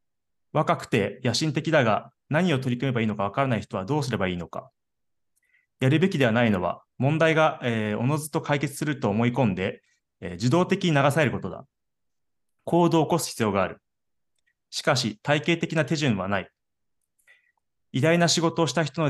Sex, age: male, 30-49